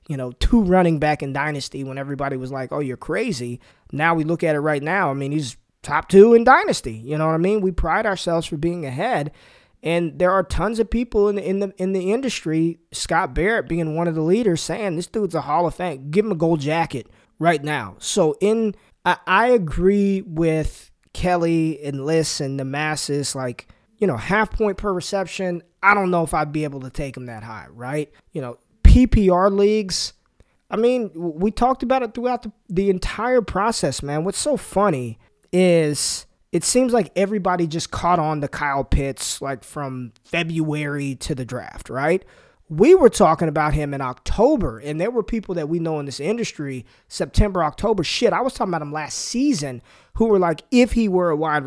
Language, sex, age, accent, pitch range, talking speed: English, male, 20-39, American, 140-195 Hz, 205 wpm